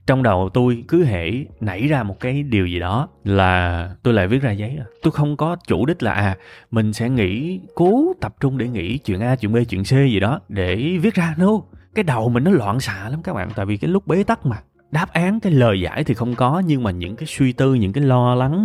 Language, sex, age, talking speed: Vietnamese, male, 20-39, 255 wpm